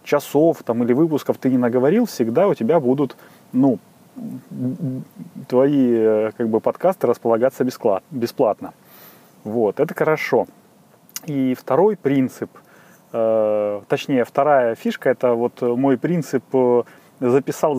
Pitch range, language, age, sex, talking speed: 125-170 Hz, Russian, 30-49, male, 110 wpm